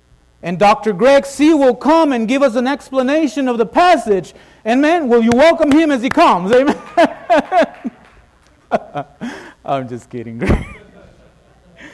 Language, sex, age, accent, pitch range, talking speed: English, male, 50-69, American, 195-280 Hz, 135 wpm